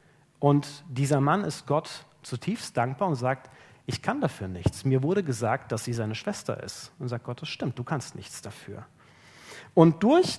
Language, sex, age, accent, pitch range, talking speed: German, male, 40-59, German, 130-170 Hz, 185 wpm